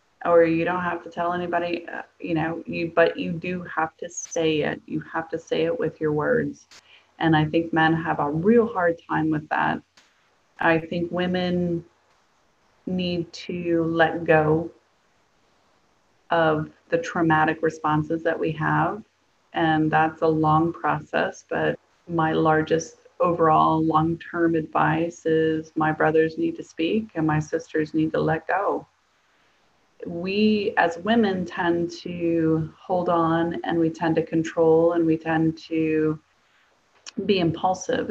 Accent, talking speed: American, 145 wpm